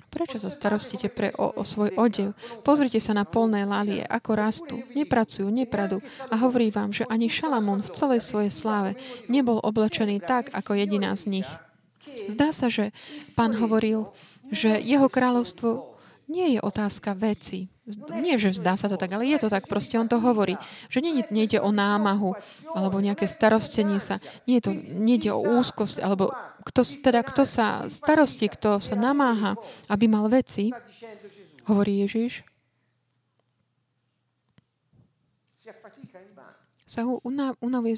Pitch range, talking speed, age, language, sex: 200-240 Hz, 145 wpm, 30-49, Slovak, female